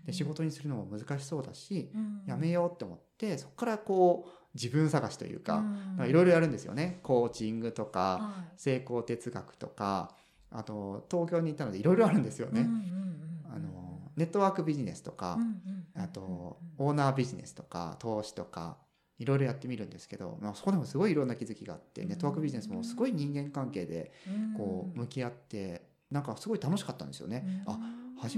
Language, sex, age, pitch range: Japanese, male, 30-49, 120-190 Hz